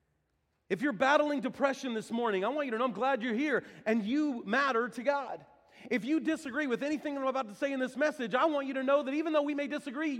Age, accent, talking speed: 40-59, American, 255 wpm